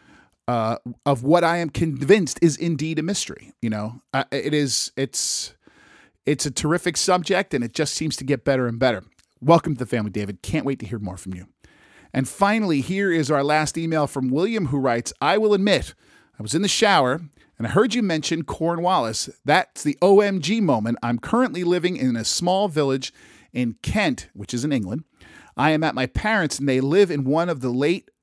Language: English